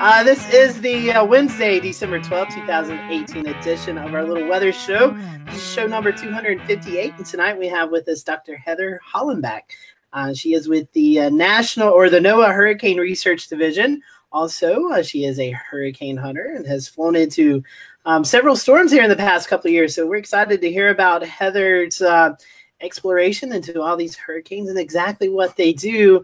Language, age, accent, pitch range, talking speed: English, 30-49, American, 165-205 Hz, 180 wpm